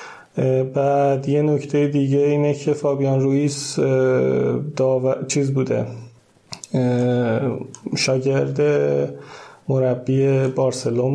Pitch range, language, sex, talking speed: 125-140 Hz, Persian, male, 75 wpm